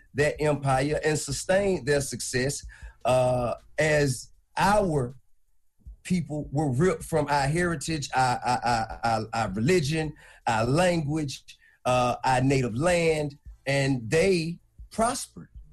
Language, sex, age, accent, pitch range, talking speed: English, male, 40-59, American, 130-170 Hz, 110 wpm